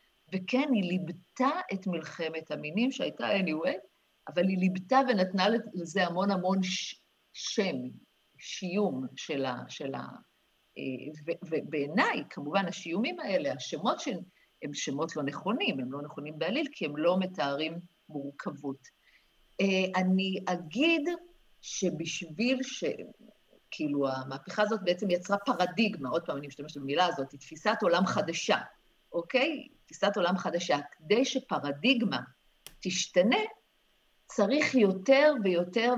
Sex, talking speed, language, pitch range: female, 115 wpm, Hebrew, 175-235 Hz